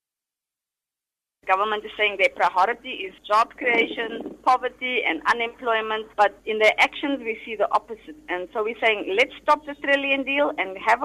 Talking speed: 165 wpm